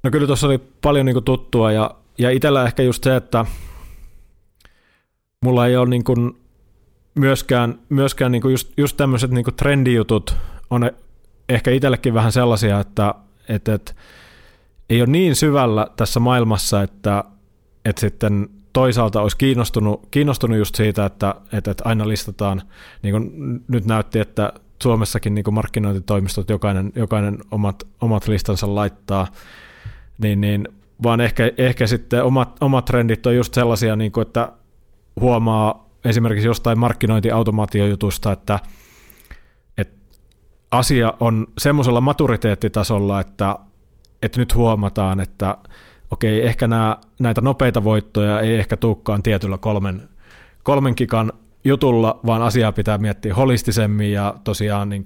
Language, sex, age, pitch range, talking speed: Finnish, male, 30-49, 100-120 Hz, 130 wpm